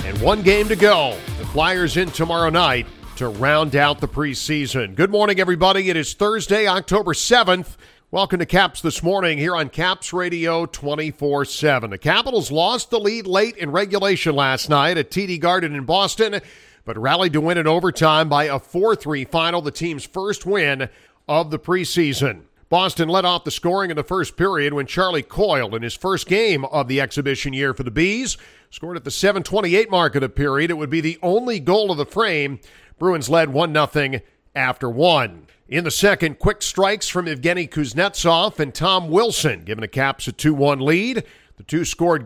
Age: 50-69